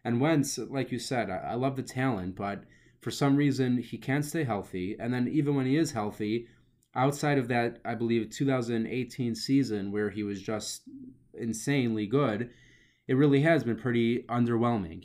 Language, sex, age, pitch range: English, male, 20-39, 110-130 Hz